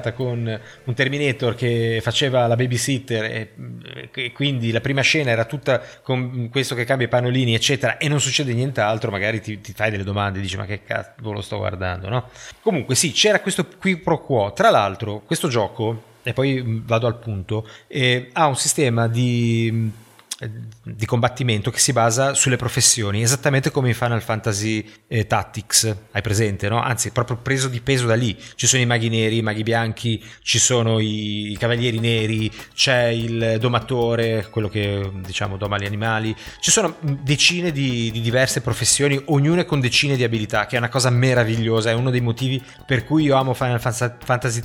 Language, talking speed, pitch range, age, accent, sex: Italian, 180 wpm, 110-130 Hz, 30-49, native, male